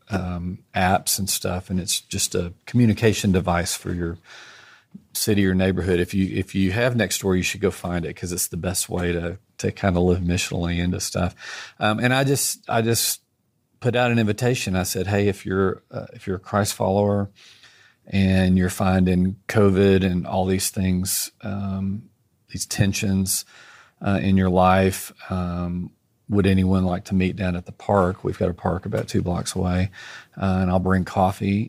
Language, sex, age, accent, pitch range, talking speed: English, male, 40-59, American, 90-105 Hz, 185 wpm